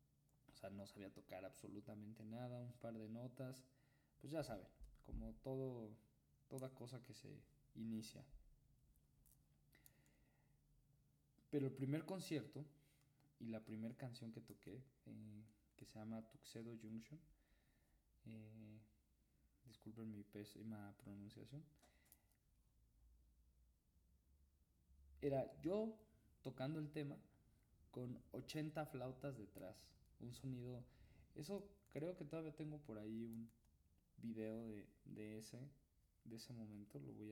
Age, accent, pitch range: 20-39, Mexican, 105-135 Hz